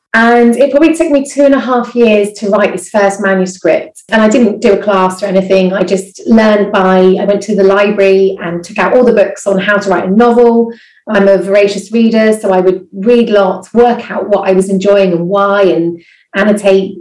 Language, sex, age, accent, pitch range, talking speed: English, female, 30-49, British, 190-230 Hz, 220 wpm